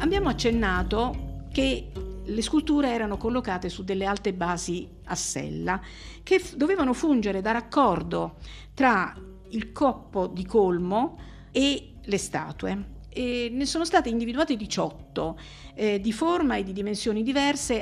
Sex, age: female, 50-69